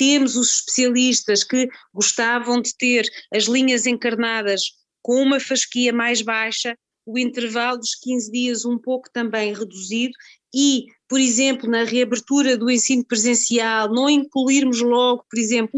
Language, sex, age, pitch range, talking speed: Portuguese, female, 20-39, 230-265 Hz, 140 wpm